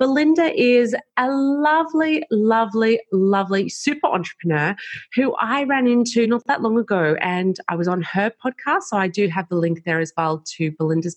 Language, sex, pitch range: English, female, 170-215 Hz